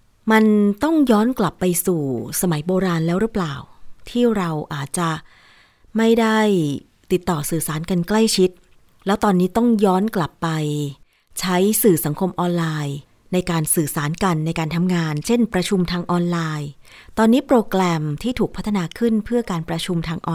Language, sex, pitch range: Thai, female, 160-200 Hz